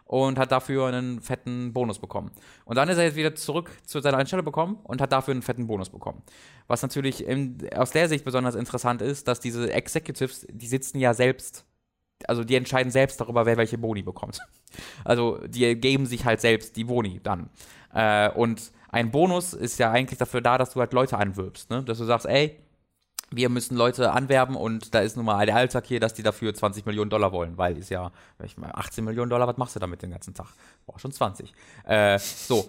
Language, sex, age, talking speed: German, male, 20-39, 215 wpm